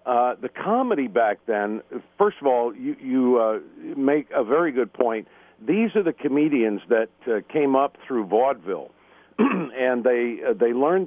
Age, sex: 50-69, male